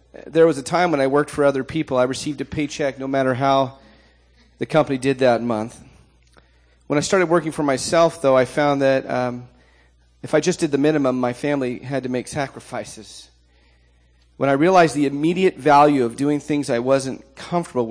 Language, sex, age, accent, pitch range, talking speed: English, male, 40-59, American, 115-145 Hz, 190 wpm